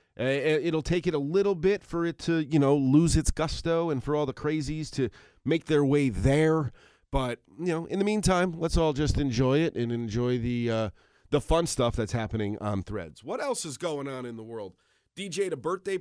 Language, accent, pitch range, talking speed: English, American, 110-150 Hz, 215 wpm